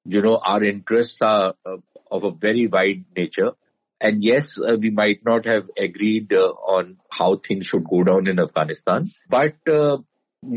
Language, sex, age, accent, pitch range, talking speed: English, male, 50-69, Indian, 110-145 Hz, 170 wpm